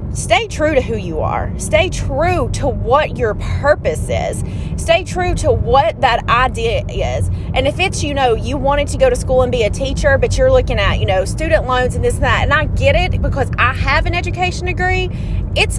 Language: English